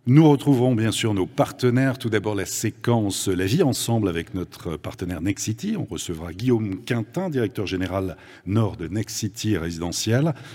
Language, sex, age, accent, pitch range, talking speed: French, male, 50-69, French, 100-125 Hz, 165 wpm